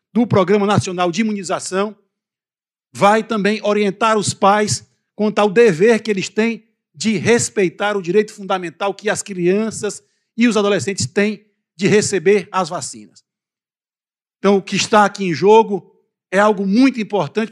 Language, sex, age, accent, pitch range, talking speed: Portuguese, male, 60-79, Brazilian, 195-220 Hz, 145 wpm